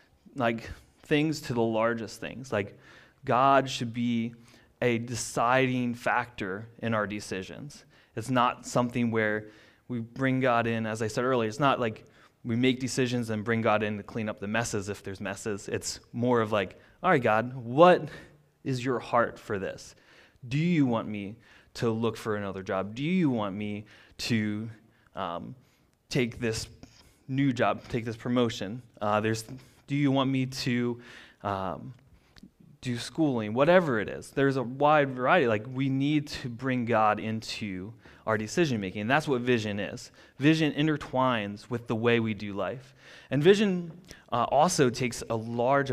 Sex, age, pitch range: male, 20-39, 110-130 Hz